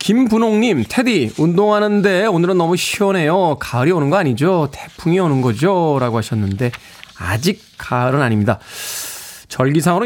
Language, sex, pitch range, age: Korean, male, 125-200 Hz, 20-39